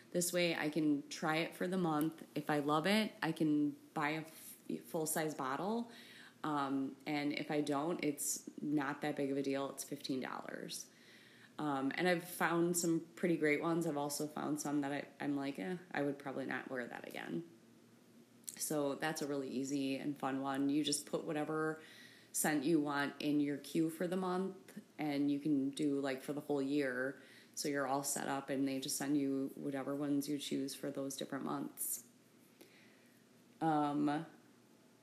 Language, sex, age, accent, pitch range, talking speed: English, female, 20-39, American, 140-165 Hz, 180 wpm